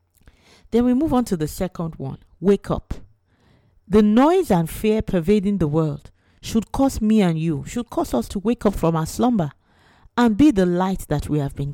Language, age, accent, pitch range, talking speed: English, 40-59, Nigerian, 150-220 Hz, 200 wpm